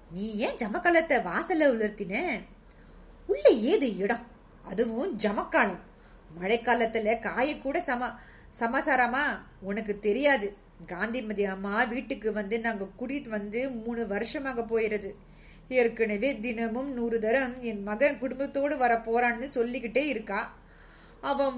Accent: native